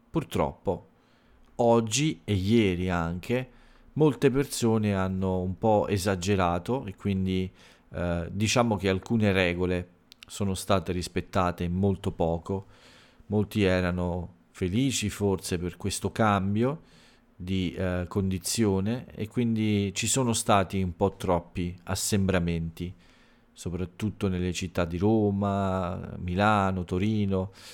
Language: Italian